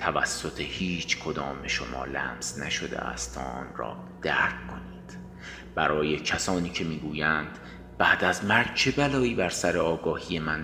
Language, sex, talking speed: Persian, male, 140 wpm